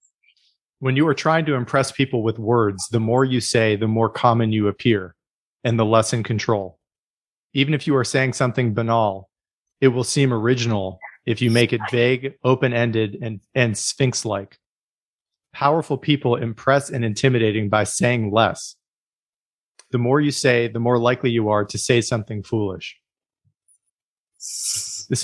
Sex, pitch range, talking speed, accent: male, 115-135 Hz, 160 wpm, American